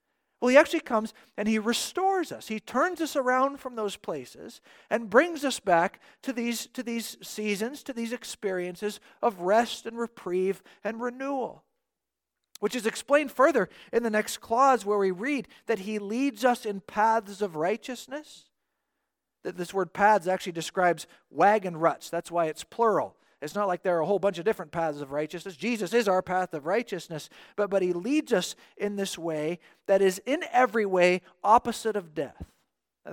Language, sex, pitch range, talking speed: English, male, 180-235 Hz, 180 wpm